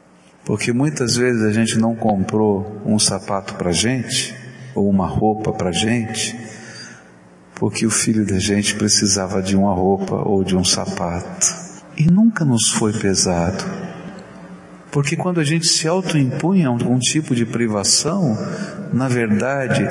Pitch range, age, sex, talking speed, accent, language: 110-155 Hz, 50-69, male, 140 wpm, Brazilian, Portuguese